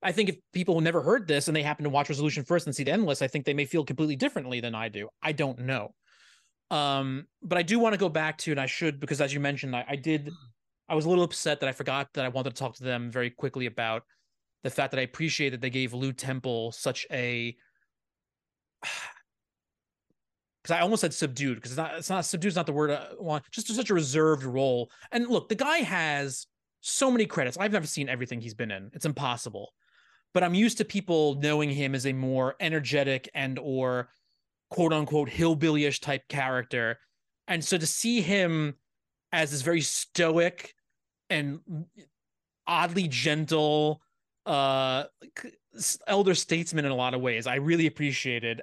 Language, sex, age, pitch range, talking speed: English, male, 30-49, 130-170 Hz, 195 wpm